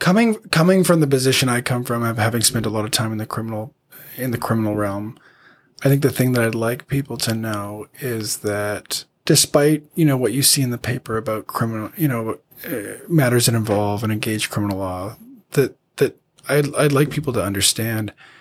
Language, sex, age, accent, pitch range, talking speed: English, male, 20-39, American, 105-135 Hz, 205 wpm